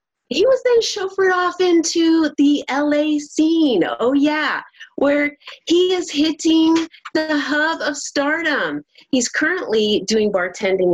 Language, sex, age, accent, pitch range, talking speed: English, female, 30-49, American, 210-300 Hz, 125 wpm